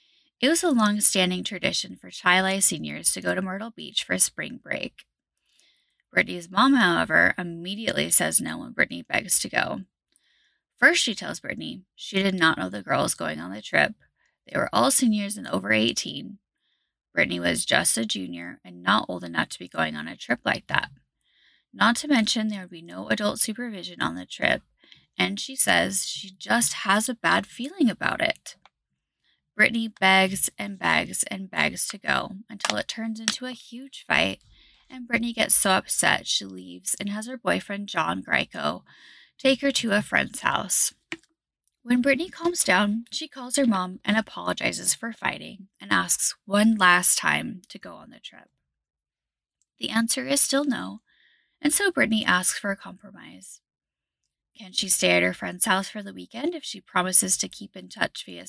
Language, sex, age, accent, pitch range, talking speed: English, female, 10-29, American, 180-255 Hz, 180 wpm